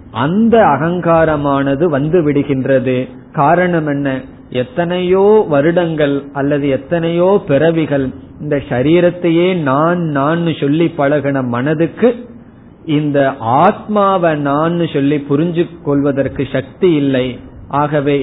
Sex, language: male, Tamil